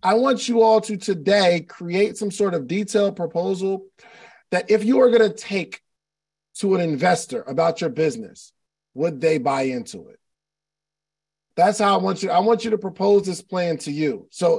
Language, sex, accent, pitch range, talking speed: English, male, American, 170-225 Hz, 185 wpm